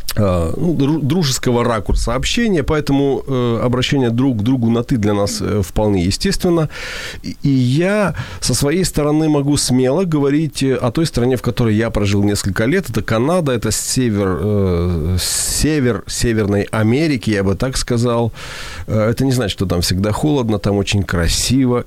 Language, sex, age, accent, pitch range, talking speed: Ukrainian, male, 40-59, native, 105-140 Hz, 145 wpm